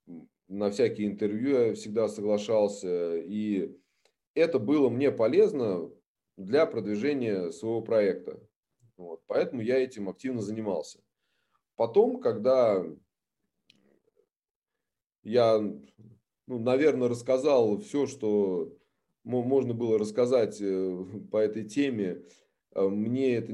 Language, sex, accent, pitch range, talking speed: Russian, male, native, 100-125 Hz, 90 wpm